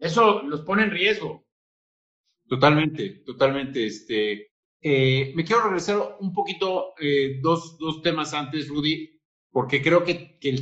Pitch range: 135-170 Hz